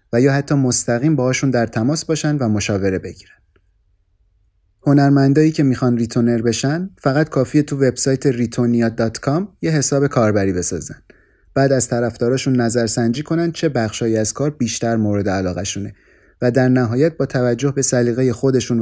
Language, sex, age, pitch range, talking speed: Persian, male, 30-49, 110-140 Hz, 145 wpm